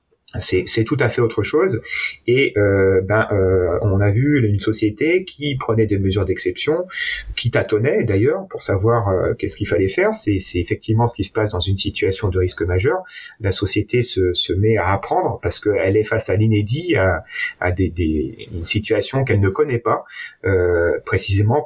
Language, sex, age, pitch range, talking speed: French, male, 40-59, 100-130 Hz, 190 wpm